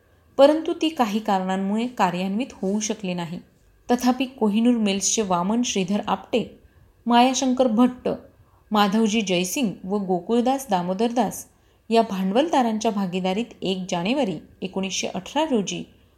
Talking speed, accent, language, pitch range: 105 wpm, native, Marathi, 195-245 Hz